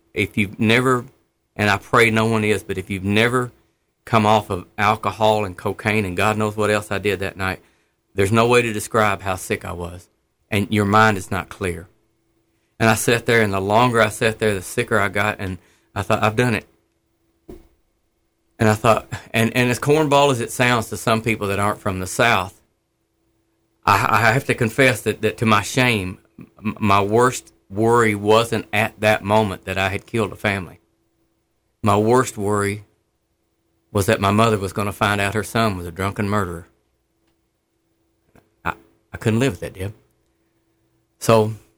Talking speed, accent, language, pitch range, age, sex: 185 wpm, American, English, 100-110 Hz, 40-59, male